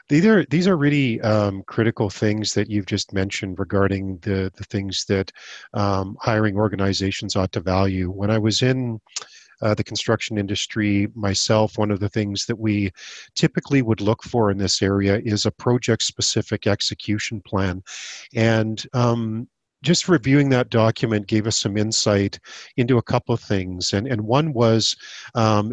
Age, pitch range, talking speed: 40-59, 100-120 Hz, 160 wpm